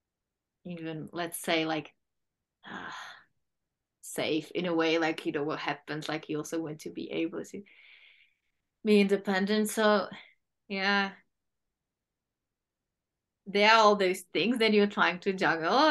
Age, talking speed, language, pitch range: 20-39, 135 wpm, English, 165-210 Hz